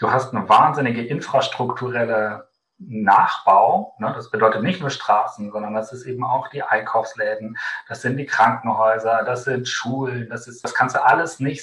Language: German